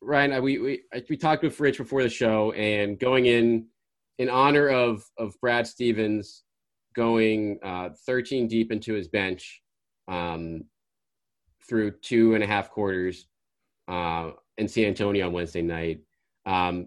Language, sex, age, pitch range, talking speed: English, male, 30-49, 95-125 Hz, 150 wpm